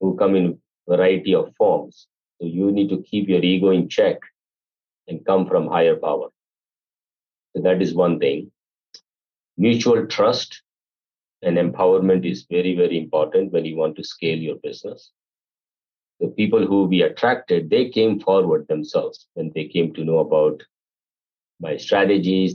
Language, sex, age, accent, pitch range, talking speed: English, male, 50-69, Indian, 90-110 Hz, 150 wpm